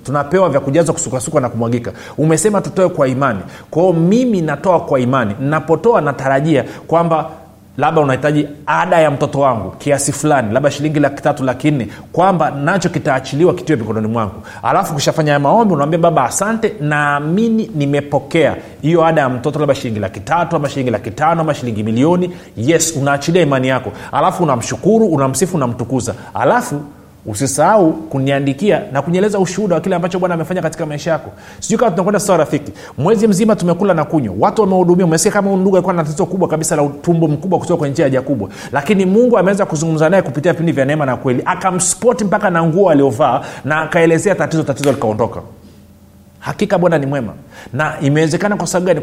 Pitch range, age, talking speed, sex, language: 135-180 Hz, 40-59, 170 wpm, male, Swahili